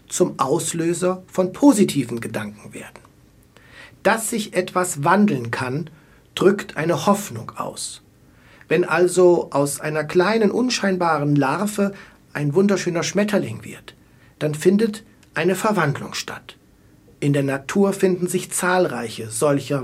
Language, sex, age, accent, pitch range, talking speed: German, male, 60-79, German, 140-185 Hz, 115 wpm